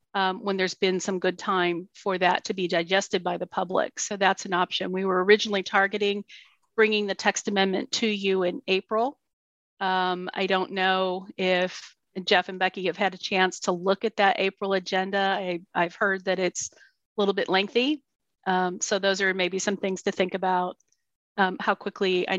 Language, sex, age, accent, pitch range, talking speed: English, female, 40-59, American, 185-205 Hz, 190 wpm